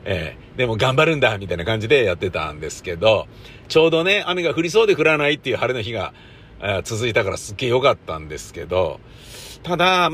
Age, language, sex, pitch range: 50-69, Japanese, male, 115-170 Hz